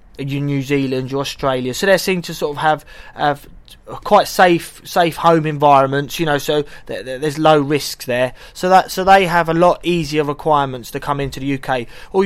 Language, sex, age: English, male, 20-39